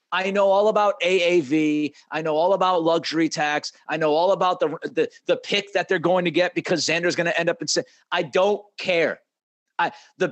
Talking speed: 215 wpm